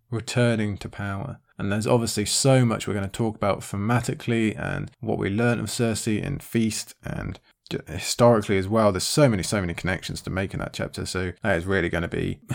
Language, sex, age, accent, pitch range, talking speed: English, male, 20-39, British, 105-135 Hz, 215 wpm